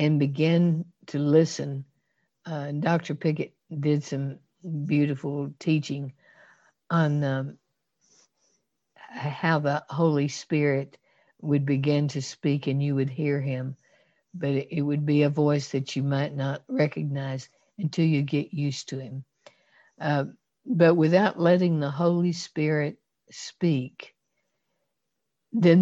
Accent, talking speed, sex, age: American, 125 wpm, female, 60-79